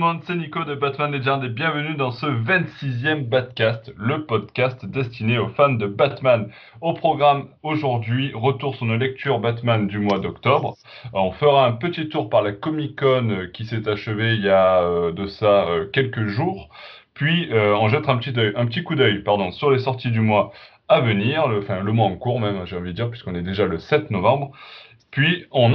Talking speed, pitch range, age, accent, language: 190 wpm, 105-140 Hz, 20-39, French, French